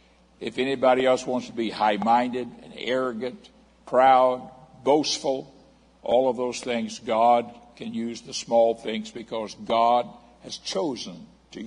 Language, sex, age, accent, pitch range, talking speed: English, male, 60-79, American, 115-130 Hz, 135 wpm